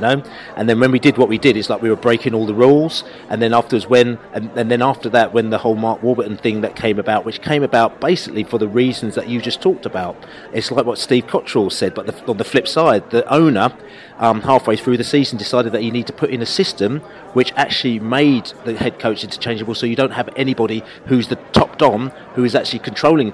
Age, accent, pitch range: 40-59, British, 115-140 Hz